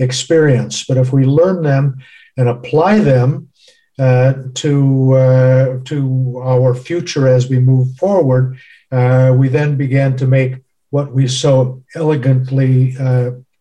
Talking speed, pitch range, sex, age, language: 130 wpm, 130-150 Hz, male, 50-69, English